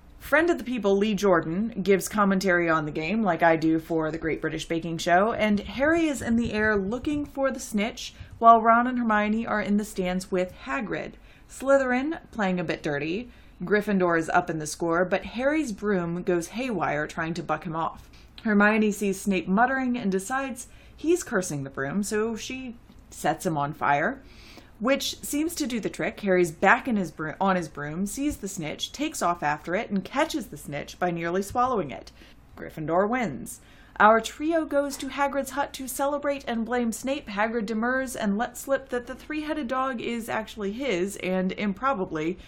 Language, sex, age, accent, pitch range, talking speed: English, female, 30-49, American, 180-260 Hz, 185 wpm